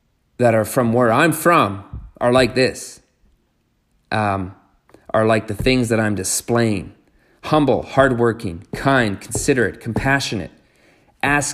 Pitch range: 105-125 Hz